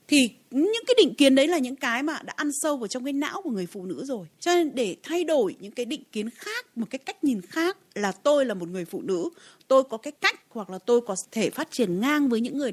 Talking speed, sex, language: 280 wpm, female, Vietnamese